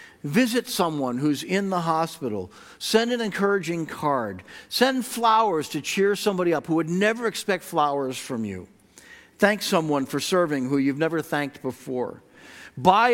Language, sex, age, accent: English, male, 50-69, American